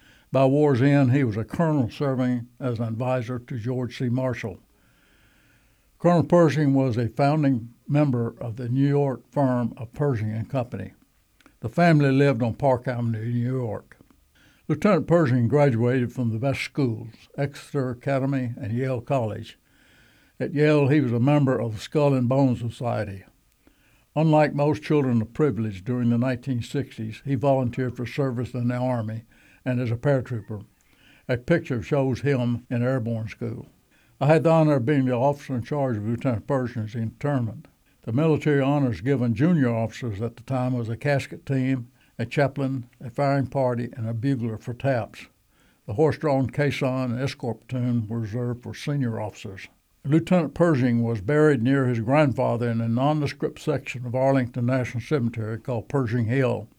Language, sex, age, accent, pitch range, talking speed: English, male, 60-79, American, 120-140 Hz, 165 wpm